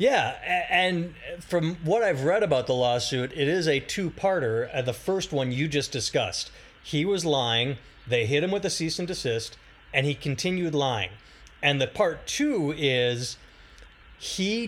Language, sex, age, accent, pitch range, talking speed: English, male, 30-49, American, 130-175 Hz, 165 wpm